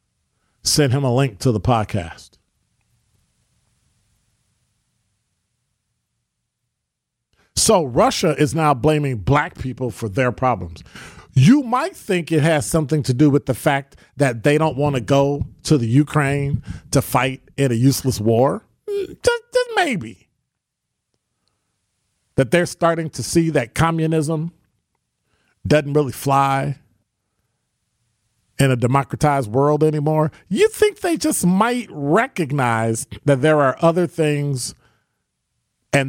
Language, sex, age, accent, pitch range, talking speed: English, male, 40-59, American, 115-150 Hz, 120 wpm